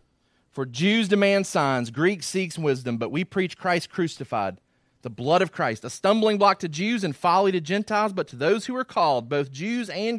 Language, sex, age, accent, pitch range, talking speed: English, male, 30-49, American, 115-180 Hz, 200 wpm